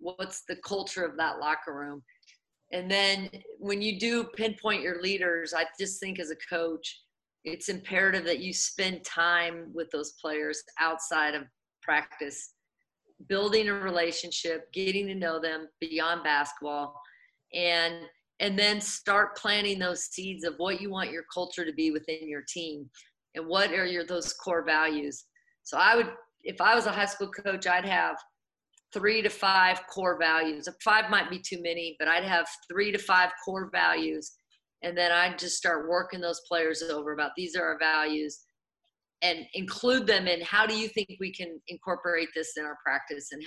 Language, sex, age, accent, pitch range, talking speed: English, female, 40-59, American, 160-195 Hz, 180 wpm